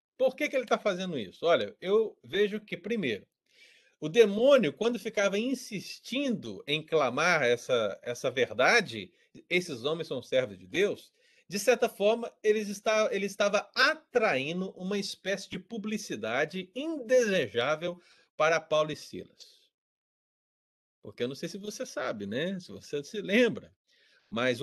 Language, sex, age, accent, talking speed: Portuguese, male, 40-59, Brazilian, 140 wpm